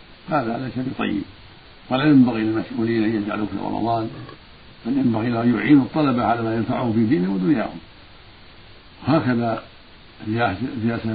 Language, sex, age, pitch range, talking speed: Arabic, male, 60-79, 105-125 Hz, 130 wpm